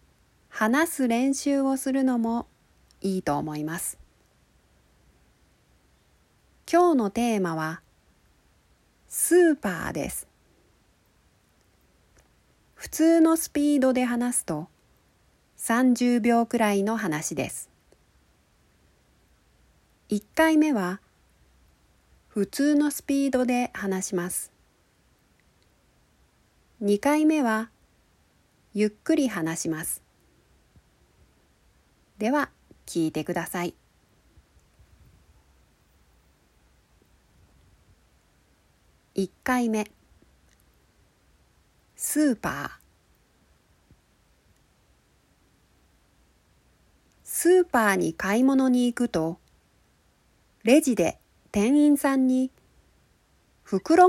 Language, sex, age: Japanese, female, 40-59